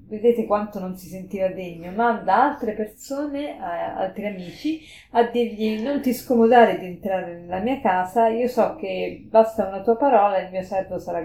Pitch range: 180-230 Hz